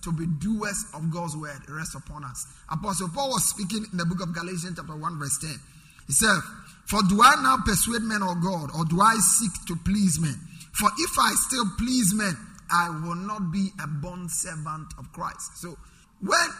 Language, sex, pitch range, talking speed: English, male, 165-210 Hz, 205 wpm